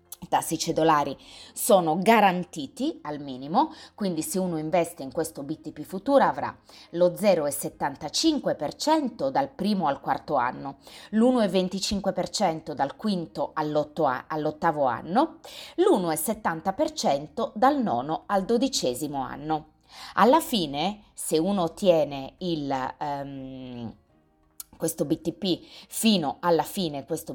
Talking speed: 100 wpm